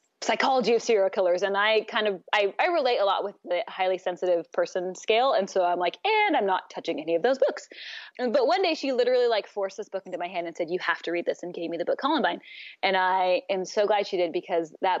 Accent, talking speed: American, 260 wpm